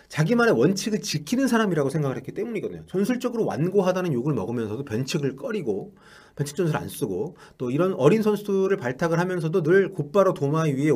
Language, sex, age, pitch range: Korean, male, 30-49, 145-205 Hz